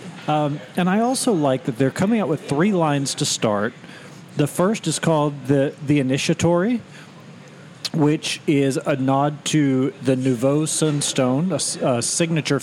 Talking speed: 150 wpm